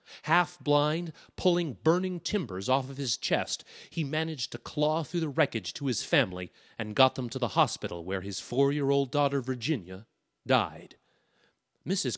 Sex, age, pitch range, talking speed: male, 30-49, 115-155 Hz, 155 wpm